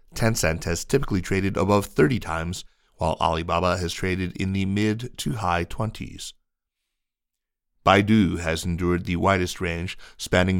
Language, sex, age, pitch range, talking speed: English, male, 30-49, 85-100 Hz, 125 wpm